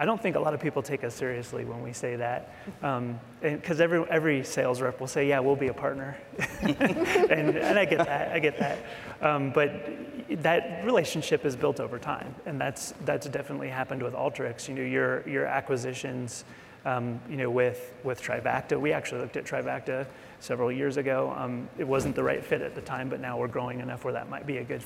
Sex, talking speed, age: male, 220 wpm, 30-49